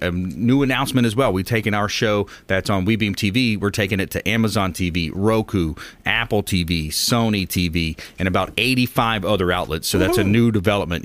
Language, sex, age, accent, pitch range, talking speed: English, male, 30-49, American, 95-125 Hz, 185 wpm